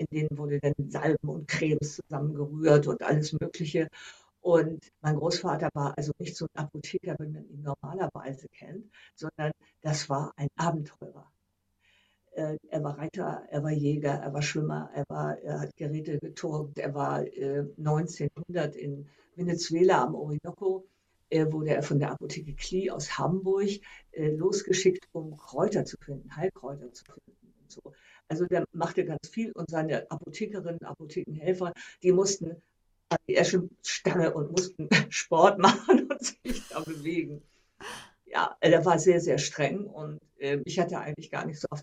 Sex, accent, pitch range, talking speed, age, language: female, German, 145-175 Hz, 155 wpm, 50-69, German